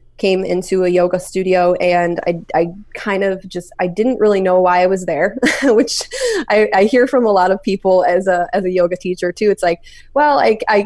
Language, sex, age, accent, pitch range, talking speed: English, female, 20-39, American, 175-200 Hz, 215 wpm